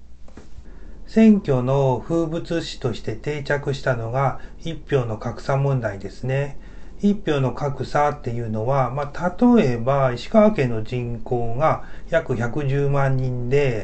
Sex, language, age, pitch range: male, Japanese, 40-59, 120-160 Hz